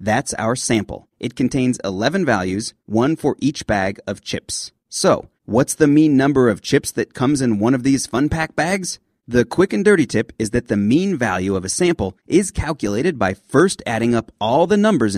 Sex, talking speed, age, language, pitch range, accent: male, 200 wpm, 30-49, English, 110-160 Hz, American